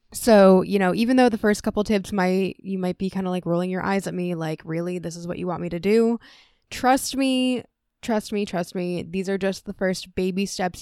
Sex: female